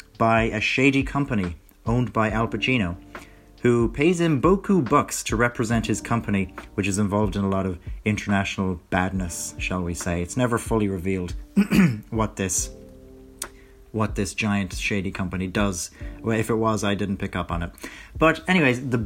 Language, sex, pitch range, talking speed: English, male, 95-120 Hz, 165 wpm